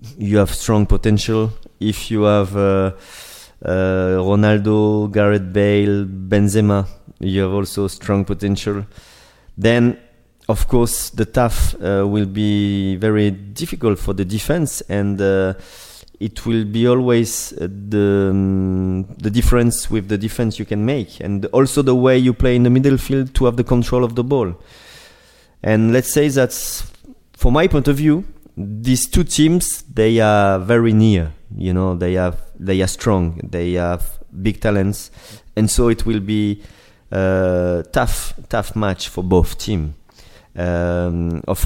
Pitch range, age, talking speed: 95-115 Hz, 30-49, 145 wpm